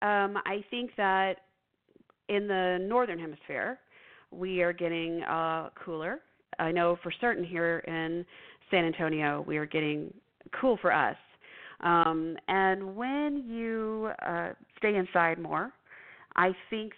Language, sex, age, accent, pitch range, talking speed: English, female, 40-59, American, 160-190 Hz, 125 wpm